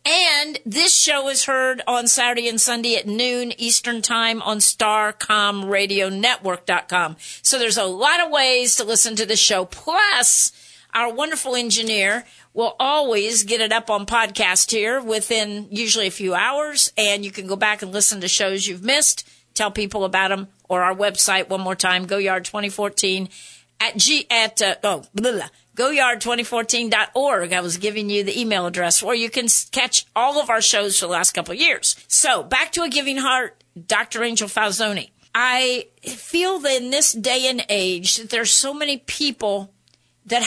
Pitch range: 205-265 Hz